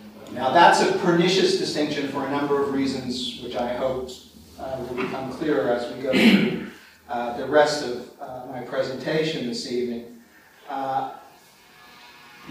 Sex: male